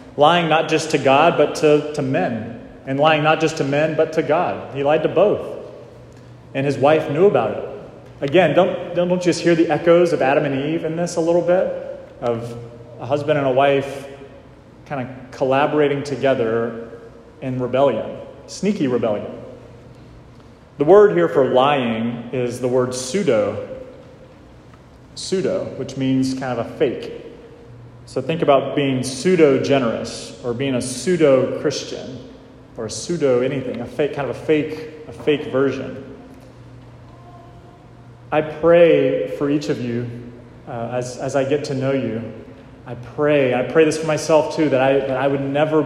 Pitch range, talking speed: 130-155 Hz, 155 wpm